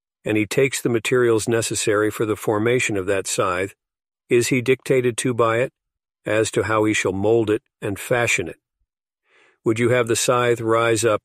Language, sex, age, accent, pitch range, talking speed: English, male, 50-69, American, 105-120 Hz, 185 wpm